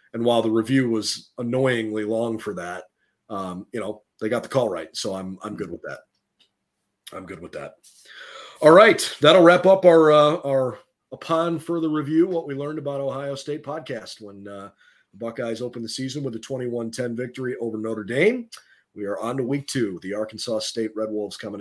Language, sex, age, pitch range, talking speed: English, male, 30-49, 110-140 Hz, 200 wpm